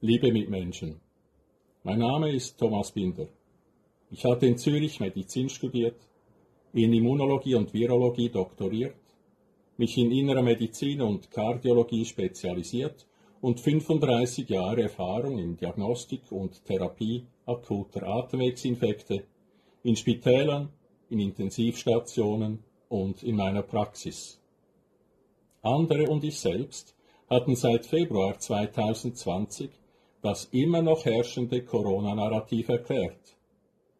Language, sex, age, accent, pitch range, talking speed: Italian, male, 50-69, Austrian, 110-135 Hz, 100 wpm